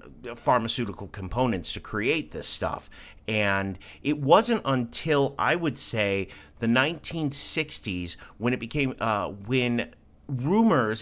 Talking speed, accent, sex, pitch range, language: 115 wpm, American, male, 95-135 Hz, English